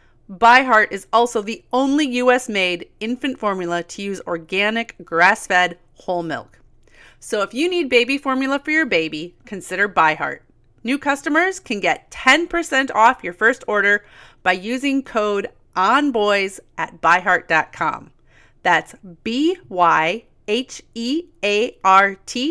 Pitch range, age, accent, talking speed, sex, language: 185-255 Hz, 30-49, American, 110 wpm, female, English